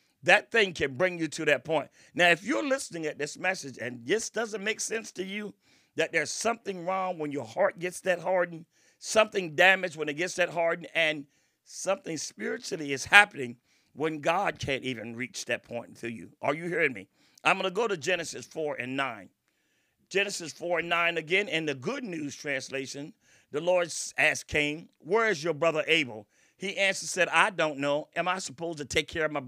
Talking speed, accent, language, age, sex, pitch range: 200 wpm, American, English, 50-69, male, 145-195 Hz